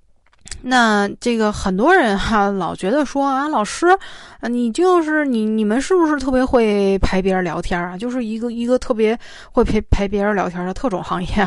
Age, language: 20-39, Chinese